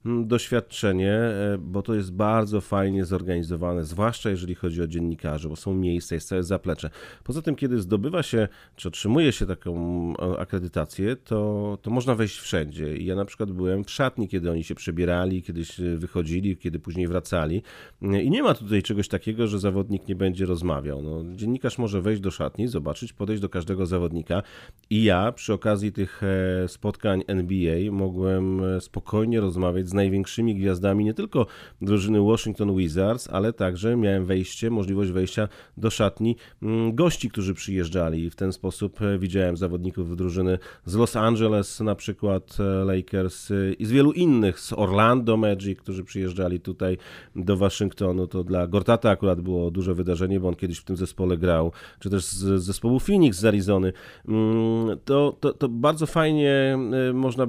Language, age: Polish, 30-49